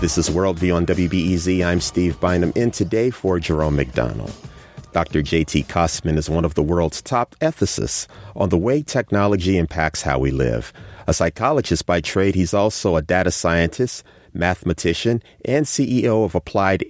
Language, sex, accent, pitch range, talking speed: English, male, American, 80-110 Hz, 160 wpm